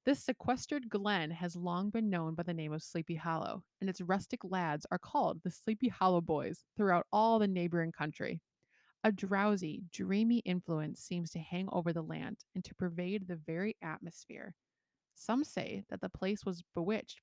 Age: 20-39